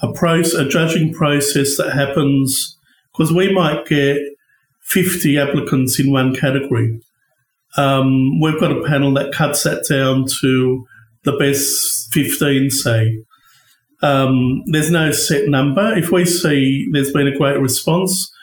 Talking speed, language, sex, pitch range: 140 wpm, English, male, 140-165 Hz